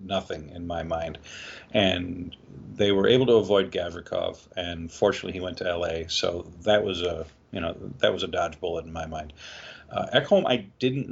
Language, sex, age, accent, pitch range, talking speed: English, male, 40-59, American, 90-110 Hz, 190 wpm